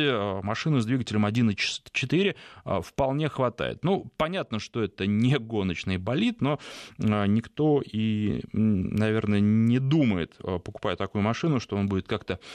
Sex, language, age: male, Russian, 20-39